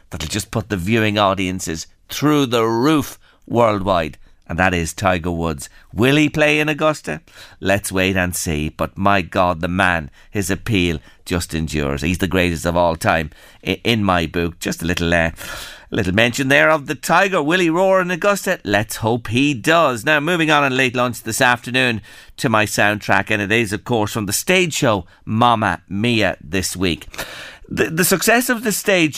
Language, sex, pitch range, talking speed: English, male, 95-145 Hz, 185 wpm